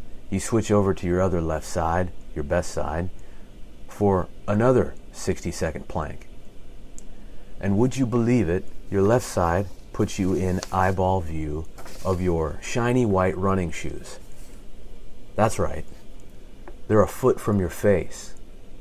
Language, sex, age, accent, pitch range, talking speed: English, male, 30-49, American, 90-110 Hz, 135 wpm